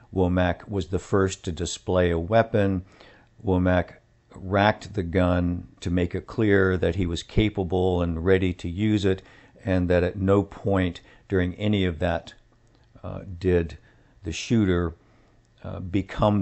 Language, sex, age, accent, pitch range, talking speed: English, male, 50-69, American, 85-100 Hz, 145 wpm